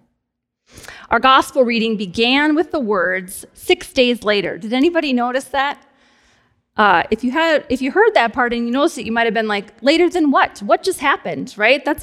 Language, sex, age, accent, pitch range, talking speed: English, female, 30-49, American, 220-285 Hz, 200 wpm